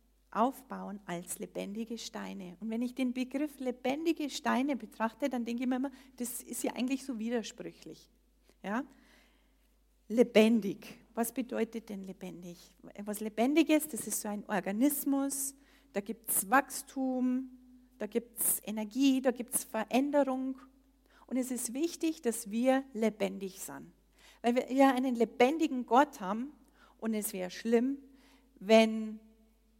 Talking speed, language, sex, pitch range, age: 135 wpm, German, female, 210-260 Hz, 40-59